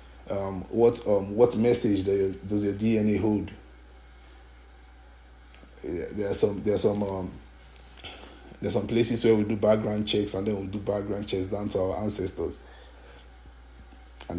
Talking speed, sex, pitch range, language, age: 150 wpm, male, 65-105 Hz, English, 20-39